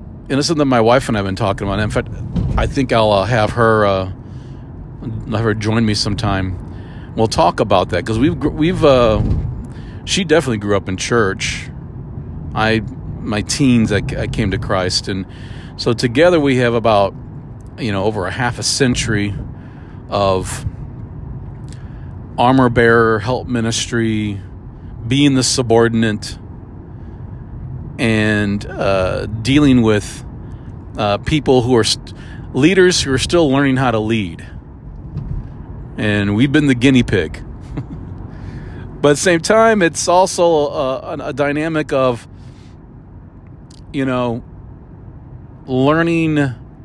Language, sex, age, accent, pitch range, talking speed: English, male, 40-59, American, 105-135 Hz, 135 wpm